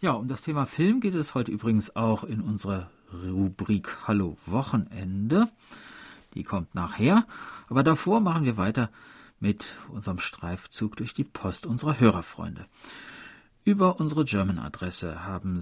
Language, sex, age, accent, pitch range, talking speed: German, male, 40-59, German, 100-150 Hz, 135 wpm